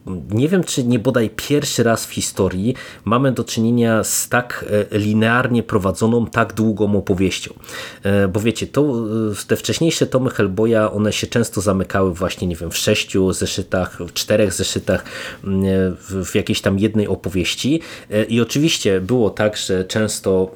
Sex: male